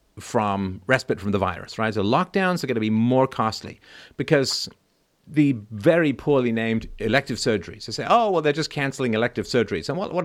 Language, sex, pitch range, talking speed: English, male, 100-140 Hz, 200 wpm